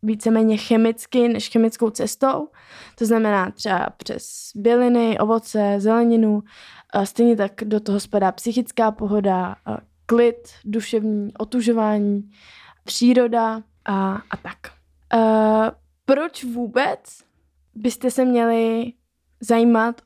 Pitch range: 215-250 Hz